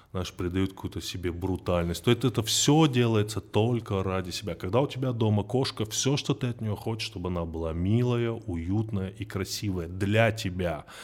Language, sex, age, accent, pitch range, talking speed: Russian, male, 20-39, native, 95-125 Hz, 180 wpm